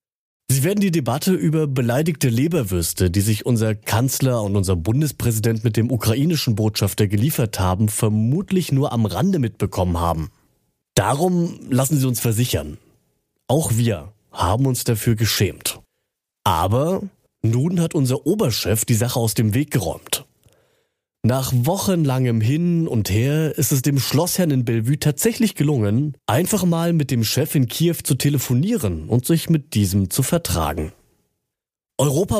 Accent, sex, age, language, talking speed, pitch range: German, male, 30-49, German, 140 wpm, 105-155 Hz